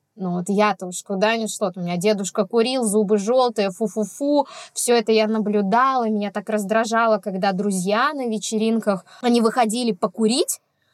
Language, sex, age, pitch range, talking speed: Russian, female, 20-39, 210-280 Hz, 150 wpm